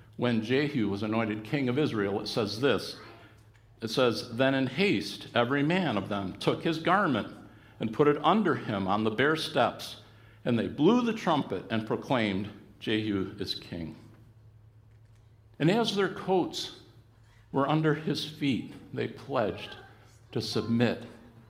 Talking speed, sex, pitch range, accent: 150 wpm, male, 110-145 Hz, American